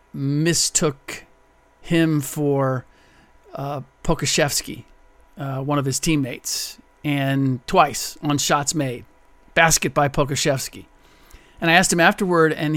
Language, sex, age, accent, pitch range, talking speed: English, male, 50-69, American, 135-155 Hz, 115 wpm